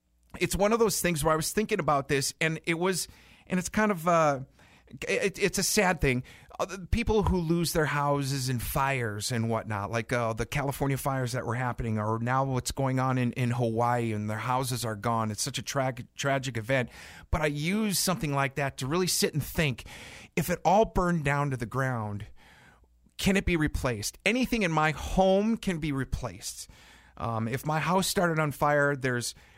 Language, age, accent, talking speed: English, 40-59, American, 195 wpm